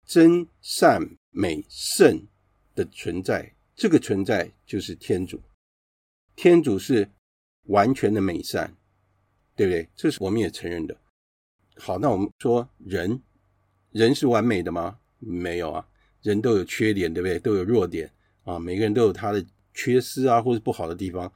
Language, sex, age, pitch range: Chinese, male, 50-69, 95-120 Hz